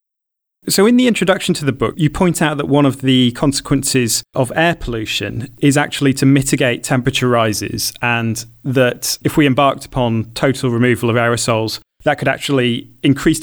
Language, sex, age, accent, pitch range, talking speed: English, male, 30-49, British, 115-140 Hz, 170 wpm